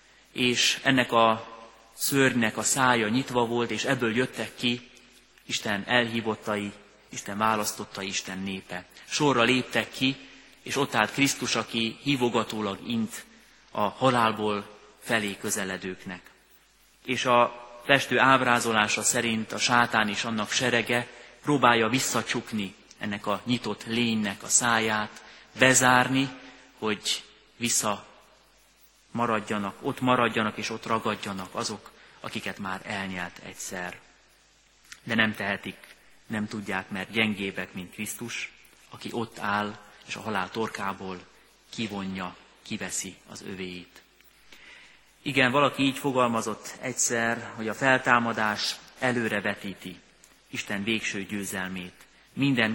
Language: Hungarian